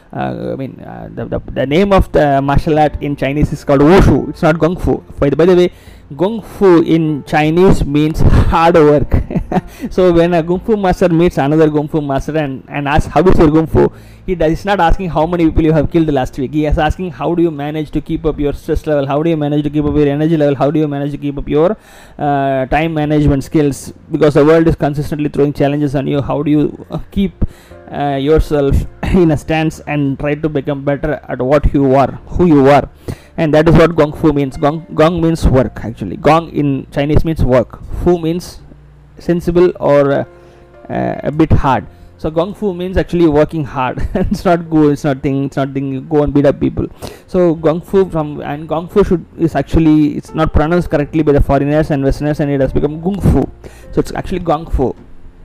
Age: 20-39